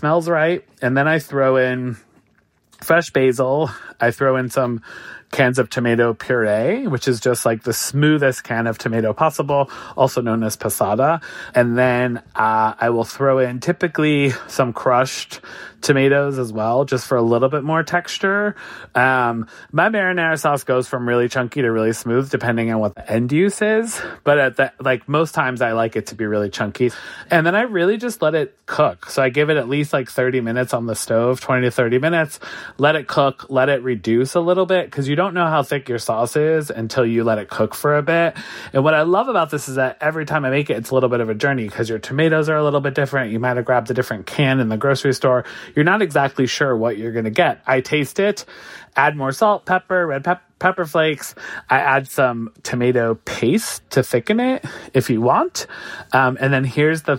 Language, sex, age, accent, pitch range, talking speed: English, male, 30-49, American, 120-155 Hz, 215 wpm